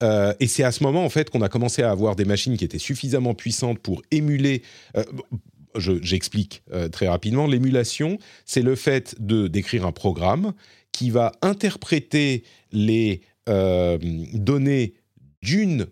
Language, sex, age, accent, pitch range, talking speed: French, male, 40-59, French, 95-140 Hz, 160 wpm